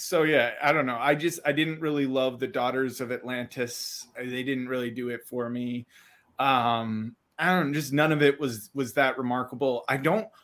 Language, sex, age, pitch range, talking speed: English, male, 30-49, 125-170 Hz, 205 wpm